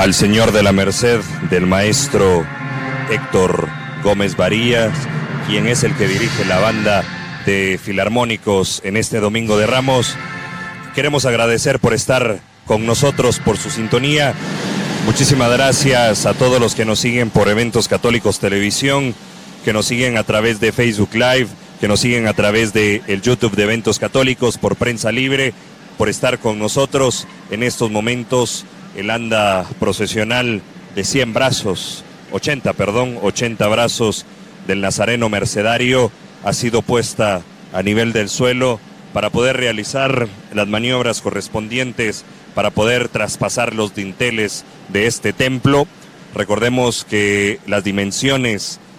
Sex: male